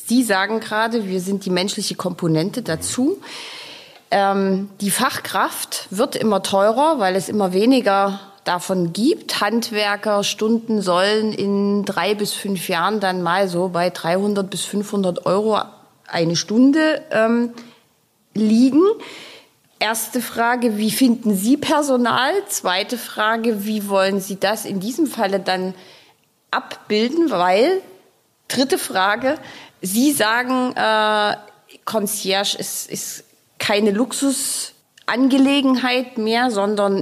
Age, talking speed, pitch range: 30-49, 115 wpm, 185-230 Hz